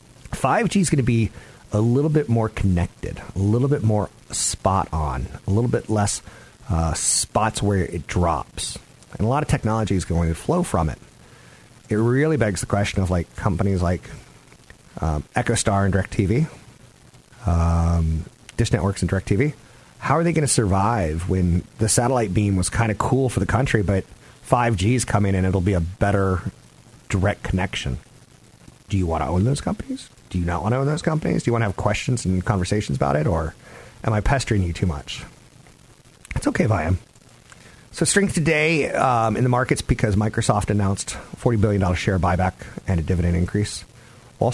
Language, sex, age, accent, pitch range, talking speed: English, male, 40-59, American, 95-125 Hz, 185 wpm